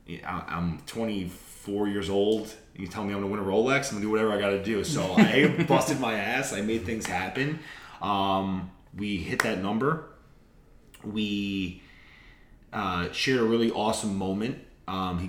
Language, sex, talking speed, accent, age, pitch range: English, male, 175 wpm, American, 30-49, 85-100 Hz